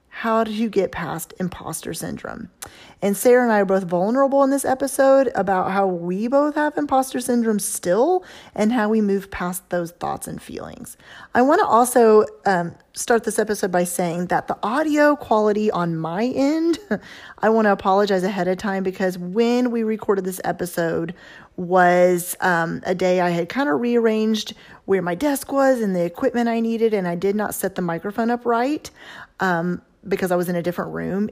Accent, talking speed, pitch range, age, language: American, 190 wpm, 185-235 Hz, 30-49, English